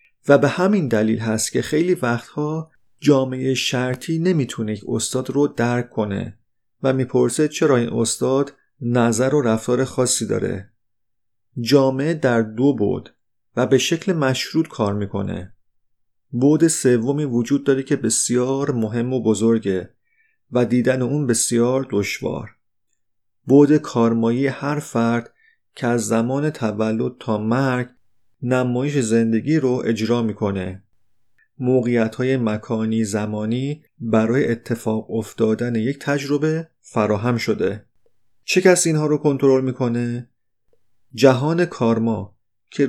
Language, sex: Persian, male